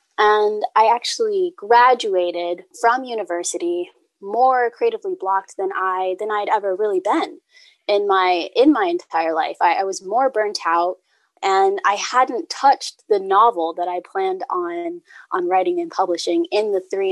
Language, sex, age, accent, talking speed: English, female, 20-39, American, 160 wpm